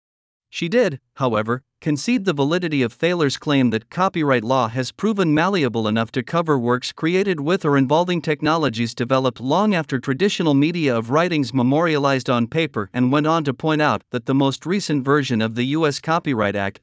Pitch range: 125-165 Hz